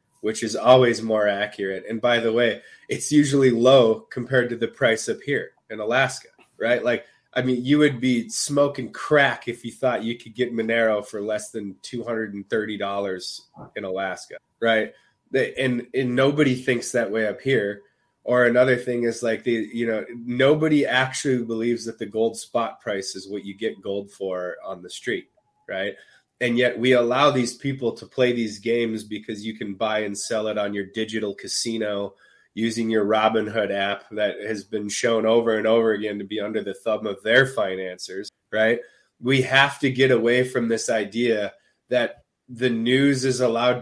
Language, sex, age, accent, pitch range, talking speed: English, male, 20-39, American, 110-125 Hz, 180 wpm